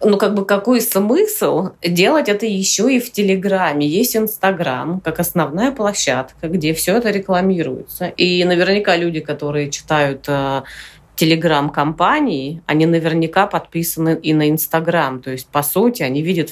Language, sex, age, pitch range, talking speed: Russian, female, 30-49, 150-185 Hz, 145 wpm